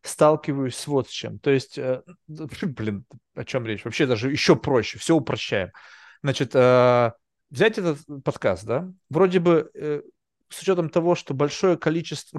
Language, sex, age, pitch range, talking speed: Russian, male, 30-49, 130-180 Hz, 145 wpm